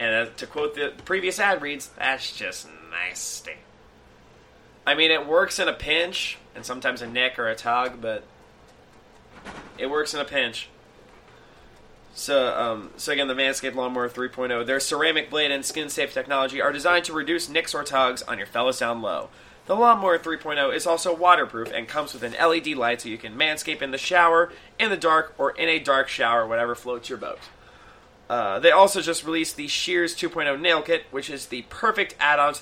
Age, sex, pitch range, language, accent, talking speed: 30-49, male, 130-175 Hz, English, American, 190 wpm